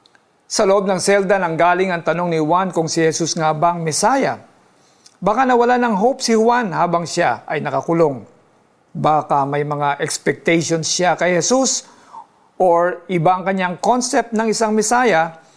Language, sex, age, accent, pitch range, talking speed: Filipino, male, 50-69, native, 165-205 Hz, 155 wpm